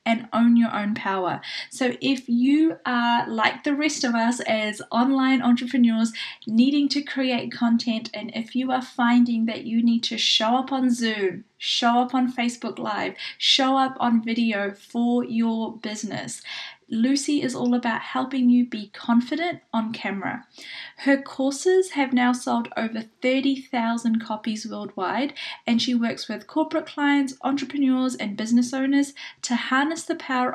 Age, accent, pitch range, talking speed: 10-29, Australian, 225-265 Hz, 155 wpm